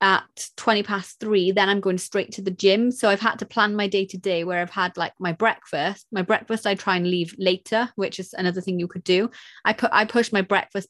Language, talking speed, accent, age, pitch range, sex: English, 255 wpm, British, 30-49, 180-210 Hz, female